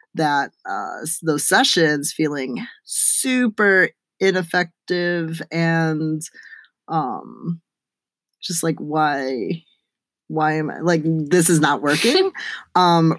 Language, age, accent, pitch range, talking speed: English, 20-39, American, 135-170 Hz, 95 wpm